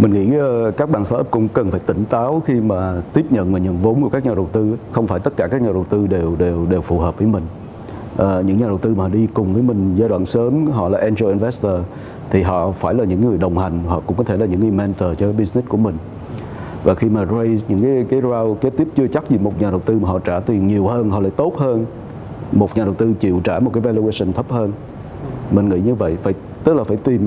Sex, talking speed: male, 265 wpm